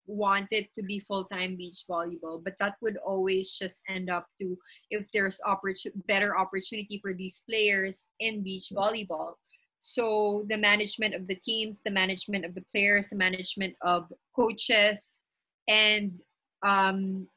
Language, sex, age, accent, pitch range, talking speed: English, female, 20-39, Filipino, 195-225 Hz, 145 wpm